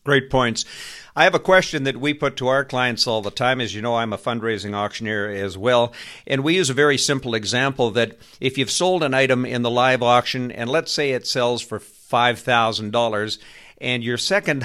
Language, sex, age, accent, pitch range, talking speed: English, male, 50-69, American, 110-135 Hz, 210 wpm